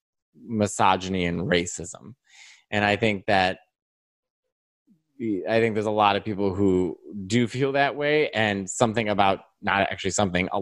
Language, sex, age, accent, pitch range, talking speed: English, male, 20-39, American, 95-115 Hz, 145 wpm